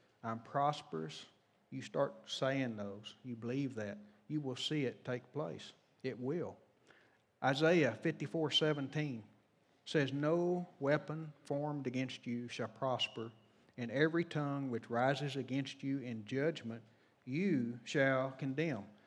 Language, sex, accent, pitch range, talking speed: English, male, American, 120-155 Hz, 125 wpm